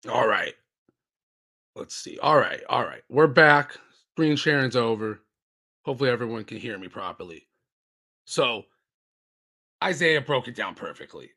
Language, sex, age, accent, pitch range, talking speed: English, male, 30-49, American, 110-160 Hz, 130 wpm